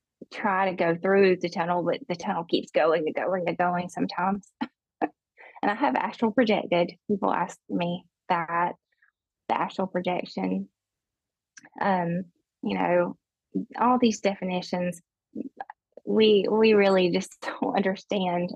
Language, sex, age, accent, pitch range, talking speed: English, female, 20-39, American, 175-195 Hz, 130 wpm